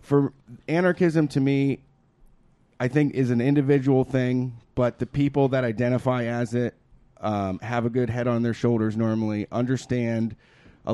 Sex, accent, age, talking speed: male, American, 30-49, 155 wpm